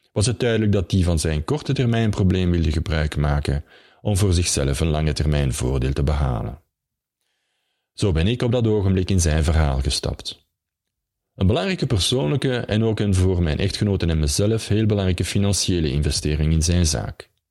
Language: Dutch